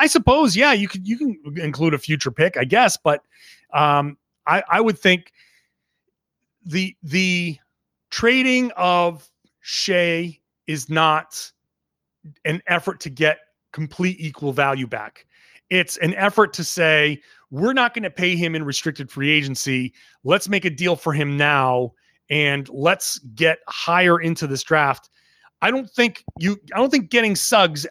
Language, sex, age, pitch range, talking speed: English, male, 30-49, 145-200 Hz, 155 wpm